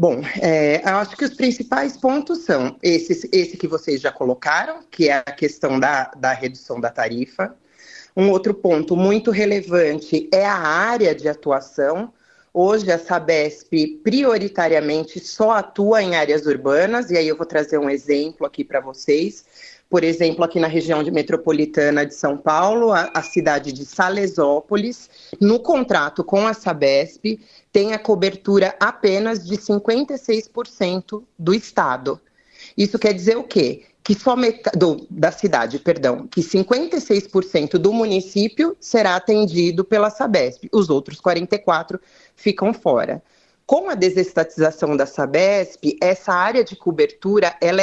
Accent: Brazilian